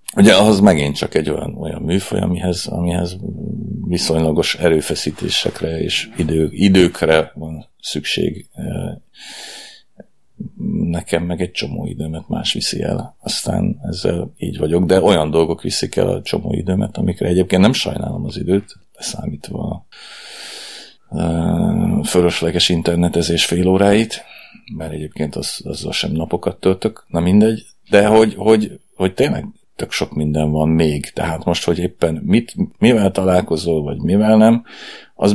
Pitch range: 80-95 Hz